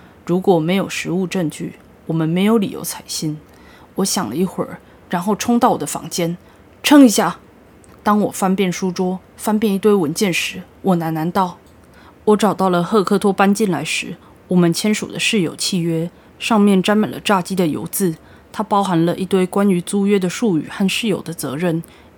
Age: 20-39